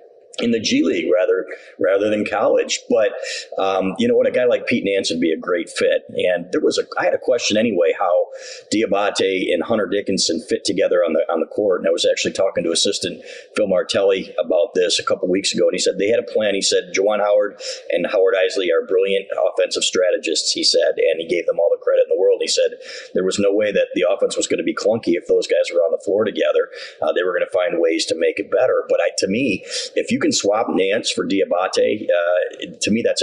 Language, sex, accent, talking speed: English, male, American, 245 wpm